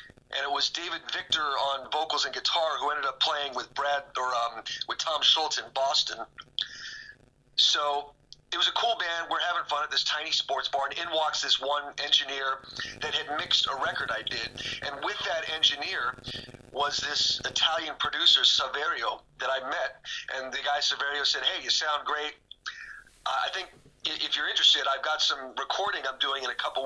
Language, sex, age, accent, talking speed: English, male, 40-59, American, 190 wpm